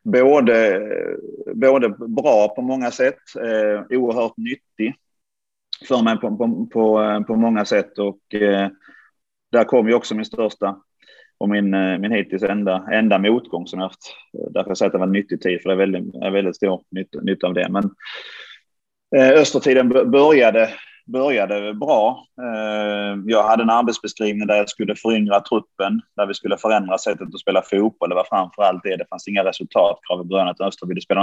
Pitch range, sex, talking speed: 100-115 Hz, male, 180 wpm